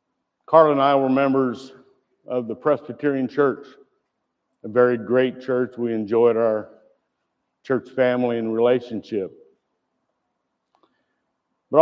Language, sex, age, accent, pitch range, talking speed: English, male, 60-79, American, 120-145 Hz, 105 wpm